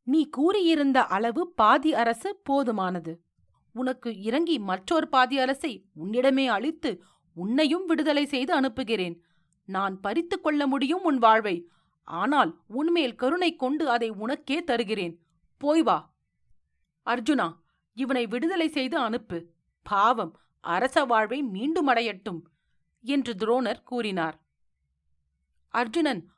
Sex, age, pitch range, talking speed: female, 40-59, 195-295 Hz, 105 wpm